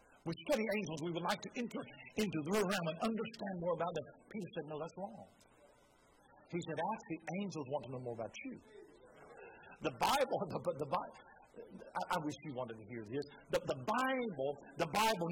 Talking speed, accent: 190 wpm, American